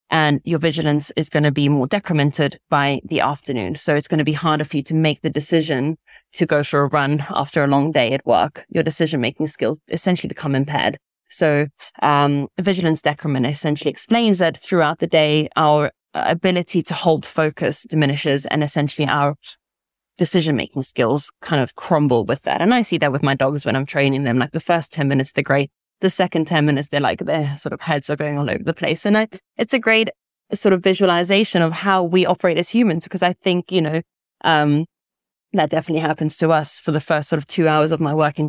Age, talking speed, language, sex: 20-39, 210 wpm, English, female